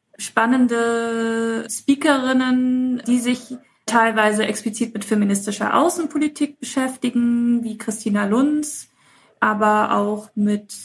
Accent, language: German, German